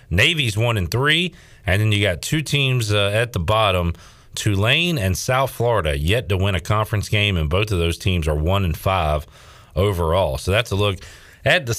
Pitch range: 95-125 Hz